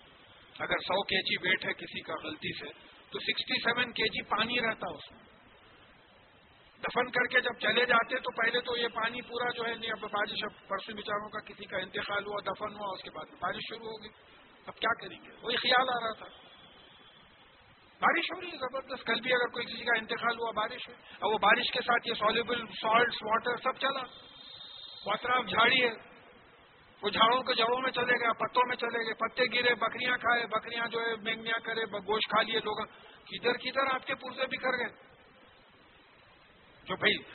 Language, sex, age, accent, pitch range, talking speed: English, male, 50-69, Indian, 215-245 Hz, 140 wpm